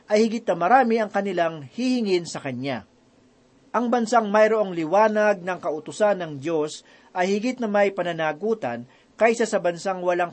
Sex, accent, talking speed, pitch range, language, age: male, native, 150 wpm, 160-220 Hz, Filipino, 40-59